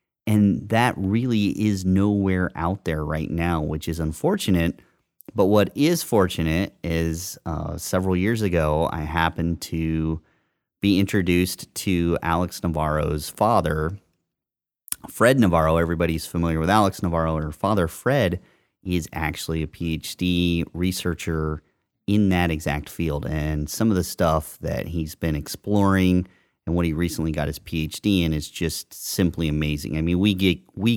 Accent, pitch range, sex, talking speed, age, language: American, 80-95 Hz, male, 145 wpm, 30-49, English